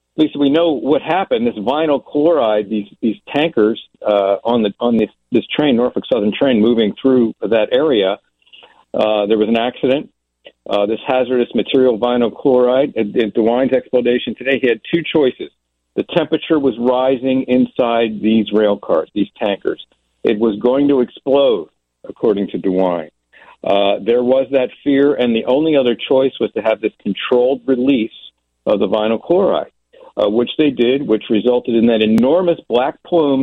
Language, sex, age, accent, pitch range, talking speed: English, male, 50-69, American, 100-130 Hz, 165 wpm